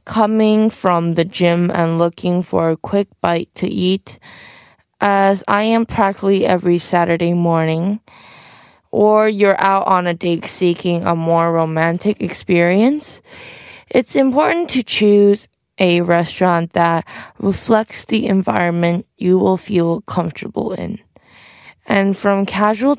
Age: 20-39